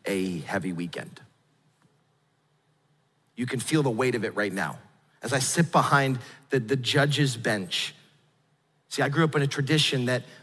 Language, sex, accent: English, male, American